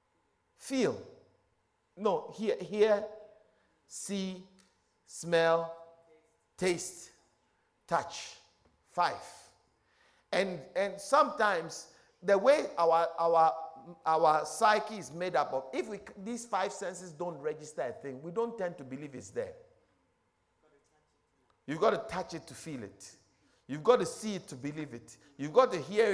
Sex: male